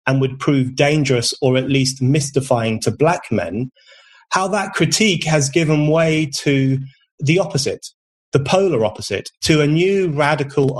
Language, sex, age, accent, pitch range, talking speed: English, male, 30-49, British, 130-155 Hz, 145 wpm